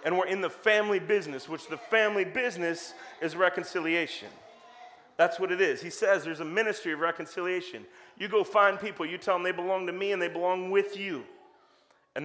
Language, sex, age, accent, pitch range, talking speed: English, male, 40-59, American, 140-190 Hz, 195 wpm